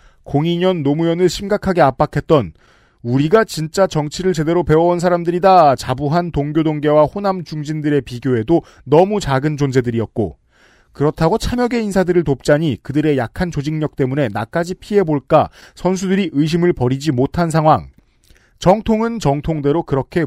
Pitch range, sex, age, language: 135-175 Hz, male, 40-59, Korean